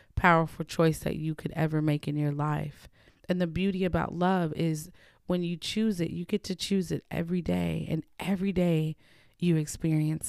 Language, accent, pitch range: English, American, 155-175 Hz